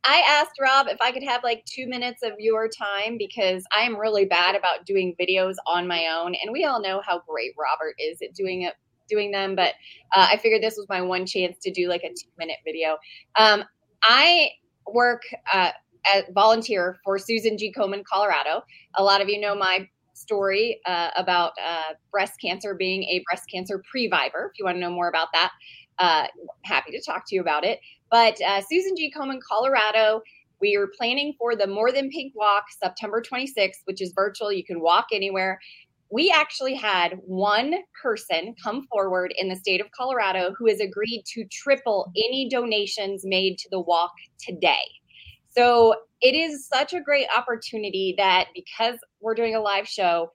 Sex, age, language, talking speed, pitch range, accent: female, 20-39, English, 190 wpm, 185-240 Hz, American